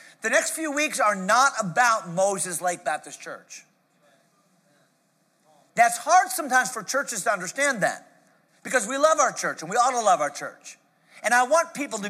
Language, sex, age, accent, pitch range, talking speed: English, male, 40-59, American, 200-285 Hz, 180 wpm